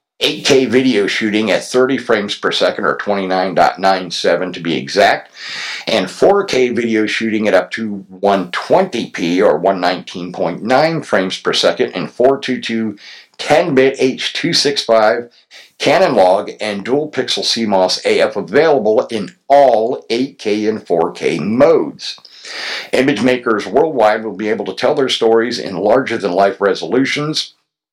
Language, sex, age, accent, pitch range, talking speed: English, male, 50-69, American, 100-130 Hz, 120 wpm